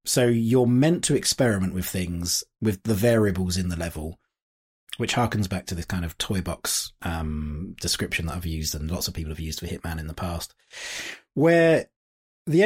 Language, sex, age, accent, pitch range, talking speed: English, male, 30-49, British, 95-125 Hz, 190 wpm